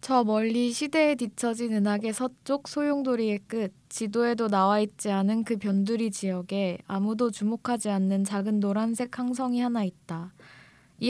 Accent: native